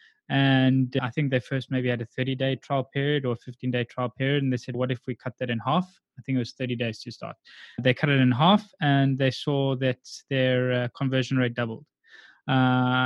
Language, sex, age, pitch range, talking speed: English, male, 20-39, 125-140 Hz, 230 wpm